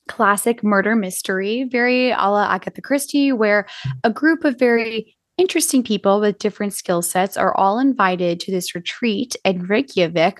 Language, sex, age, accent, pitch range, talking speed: English, female, 20-39, American, 180-220 Hz, 155 wpm